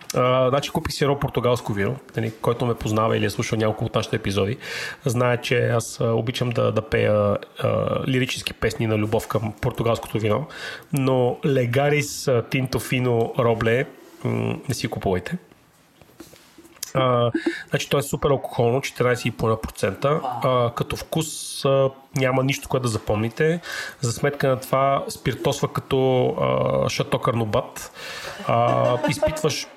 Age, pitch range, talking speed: 30-49, 115-140 Hz, 120 wpm